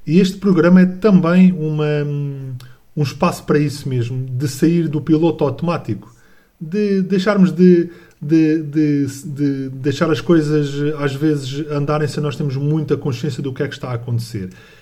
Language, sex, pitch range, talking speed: Portuguese, male, 135-180 Hz, 165 wpm